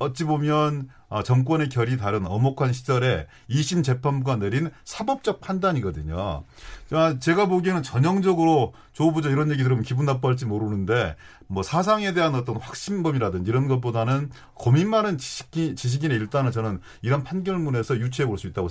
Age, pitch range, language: 40-59, 120-160 Hz, Korean